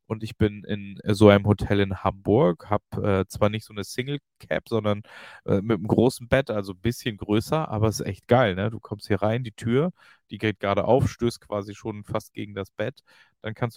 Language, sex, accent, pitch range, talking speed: German, male, German, 105-130 Hz, 225 wpm